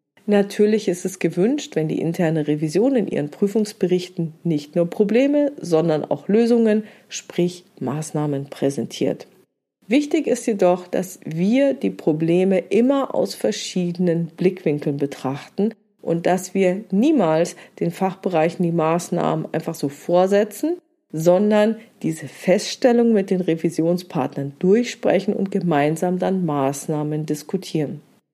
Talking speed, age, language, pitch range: 115 wpm, 40-59, German, 160-210 Hz